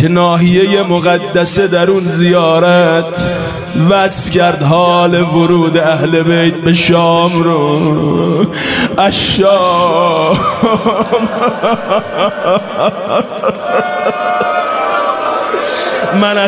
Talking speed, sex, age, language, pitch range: 60 wpm, male, 30-49, Persian, 175-205 Hz